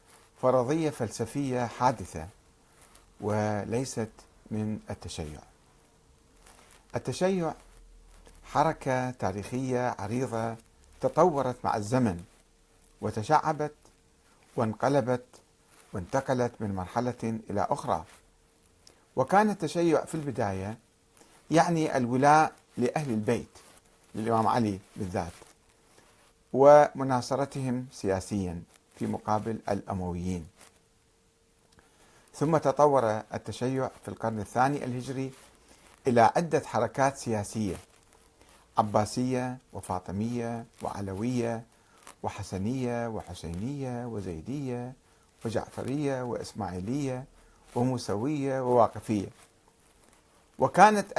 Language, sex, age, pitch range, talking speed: Arabic, male, 50-69, 100-130 Hz, 70 wpm